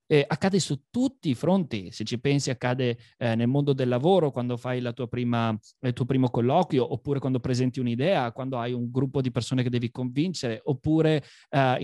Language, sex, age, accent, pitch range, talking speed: Italian, male, 20-39, native, 125-165 Hz, 200 wpm